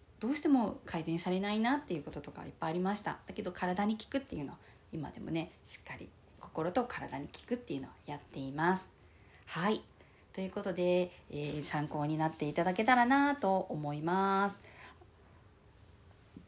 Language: Japanese